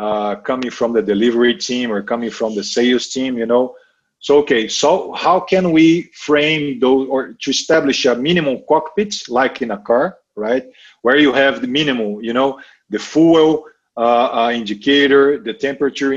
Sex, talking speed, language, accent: male, 175 wpm, English, Brazilian